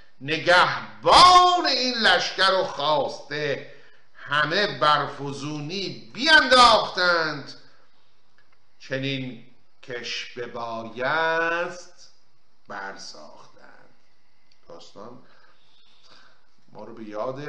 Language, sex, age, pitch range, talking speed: Persian, male, 50-69, 125-190 Hz, 55 wpm